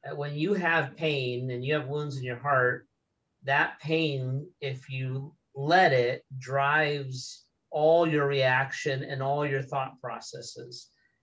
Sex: male